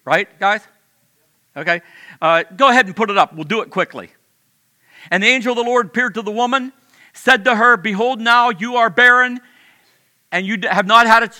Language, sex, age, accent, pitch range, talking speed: English, male, 50-69, American, 195-245 Hz, 200 wpm